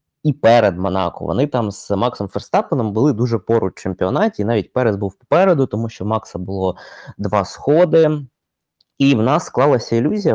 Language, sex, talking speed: Ukrainian, male, 155 wpm